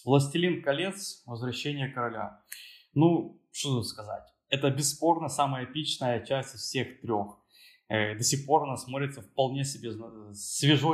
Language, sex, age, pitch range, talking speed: Ukrainian, male, 20-39, 115-140 Hz, 130 wpm